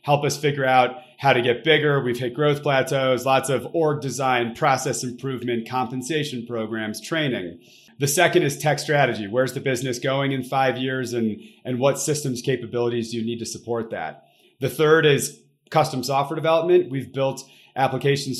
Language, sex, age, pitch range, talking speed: English, male, 30-49, 120-145 Hz, 175 wpm